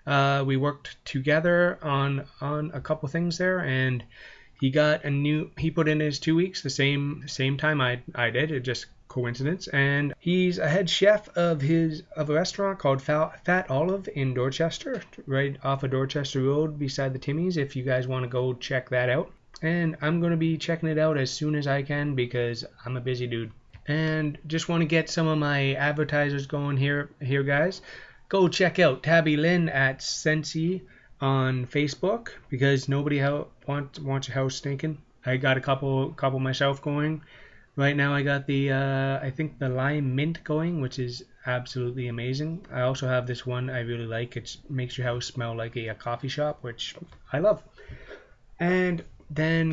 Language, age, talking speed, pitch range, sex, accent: English, 30-49, 190 wpm, 130-155 Hz, male, American